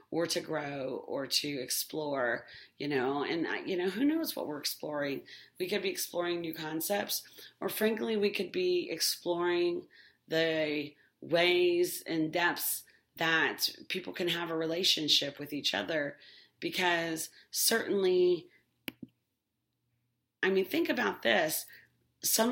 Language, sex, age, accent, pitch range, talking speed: English, female, 40-59, American, 160-210 Hz, 130 wpm